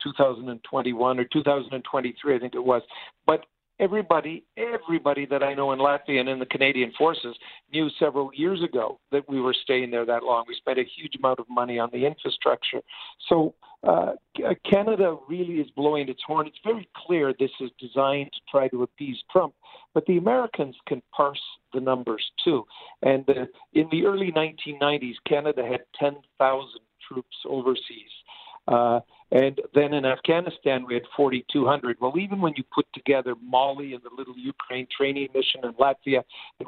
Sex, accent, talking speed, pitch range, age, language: male, American, 170 wpm, 130-160 Hz, 50-69, English